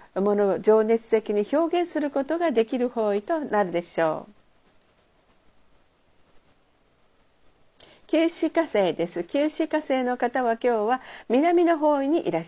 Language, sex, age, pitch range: Japanese, female, 50-69, 195-285 Hz